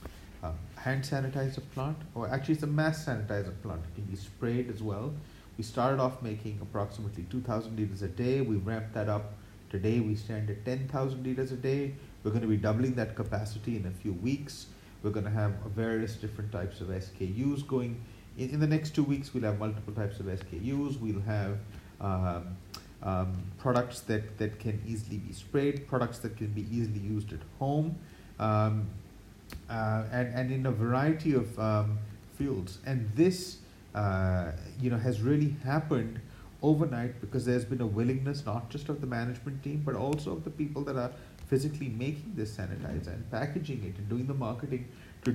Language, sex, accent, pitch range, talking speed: English, male, Indian, 105-130 Hz, 185 wpm